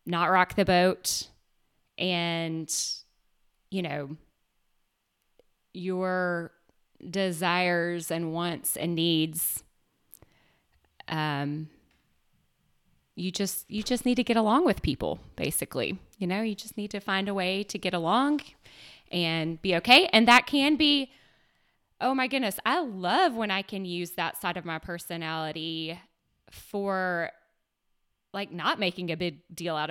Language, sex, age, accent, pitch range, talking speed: English, female, 20-39, American, 165-215 Hz, 130 wpm